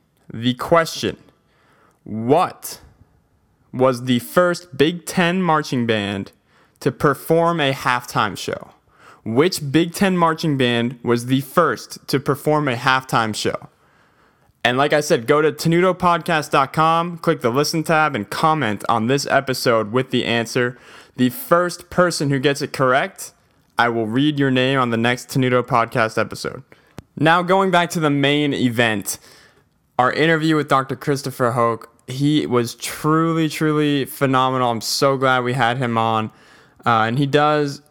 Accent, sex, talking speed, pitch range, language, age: American, male, 150 wpm, 120-150 Hz, English, 20-39